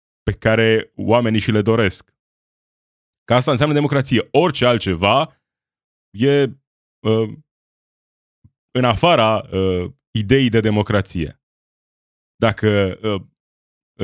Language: Romanian